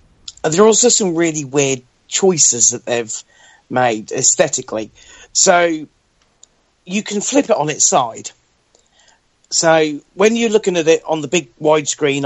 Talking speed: 140 wpm